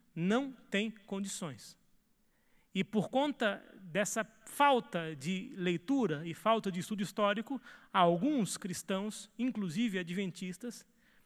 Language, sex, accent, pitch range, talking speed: Portuguese, male, Brazilian, 170-215 Hz, 100 wpm